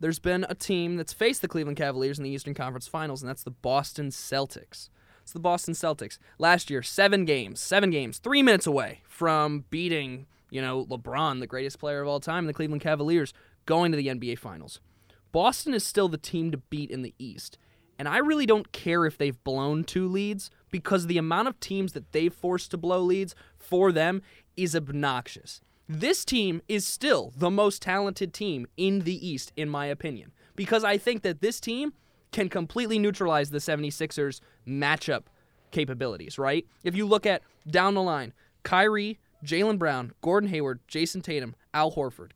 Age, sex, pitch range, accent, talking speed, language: 20-39, male, 145-200 Hz, American, 185 wpm, English